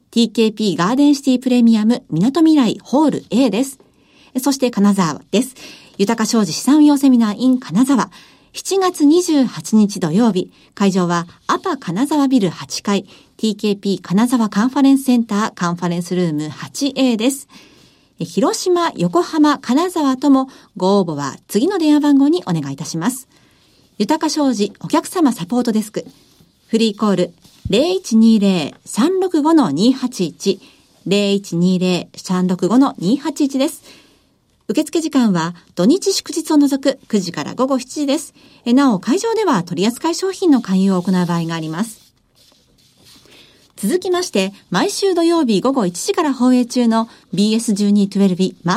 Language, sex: Japanese, female